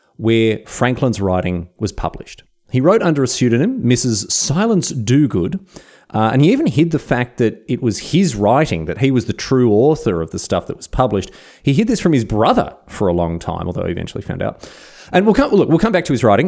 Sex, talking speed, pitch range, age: male, 230 wpm, 95-135 Hz, 30-49